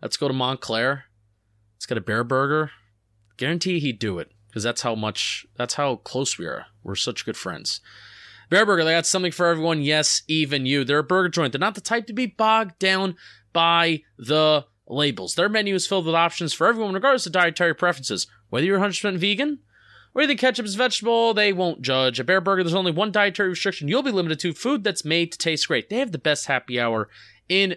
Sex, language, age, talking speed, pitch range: male, English, 20-39, 225 wpm, 150-195 Hz